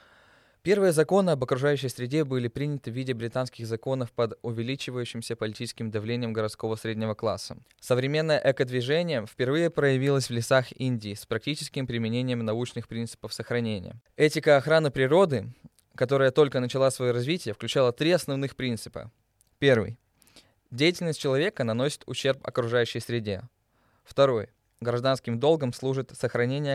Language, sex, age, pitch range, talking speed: Russian, male, 20-39, 110-135 Hz, 125 wpm